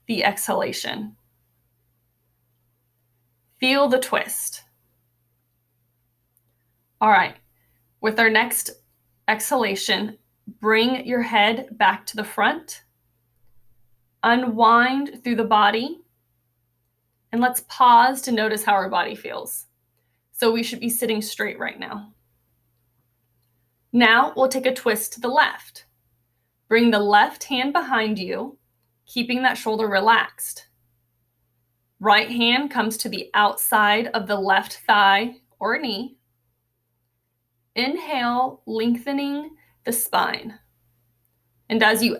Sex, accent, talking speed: female, American, 110 wpm